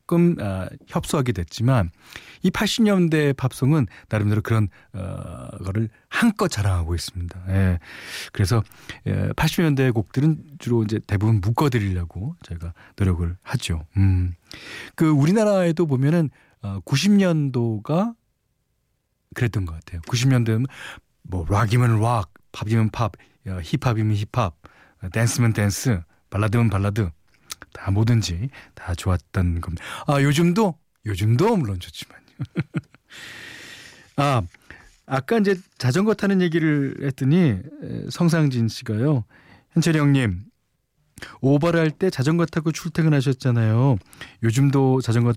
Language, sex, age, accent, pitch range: Korean, male, 40-59, native, 100-155 Hz